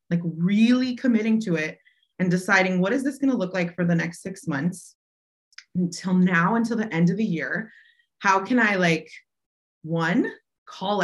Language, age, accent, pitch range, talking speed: English, 20-39, American, 165-220 Hz, 180 wpm